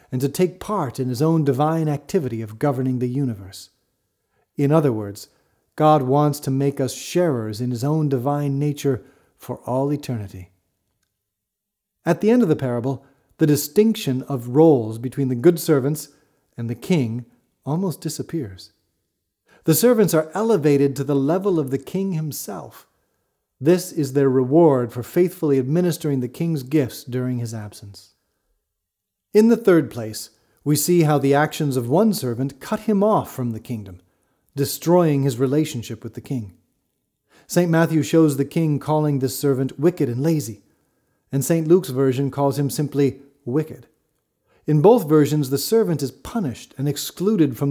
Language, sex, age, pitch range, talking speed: English, male, 40-59, 125-160 Hz, 160 wpm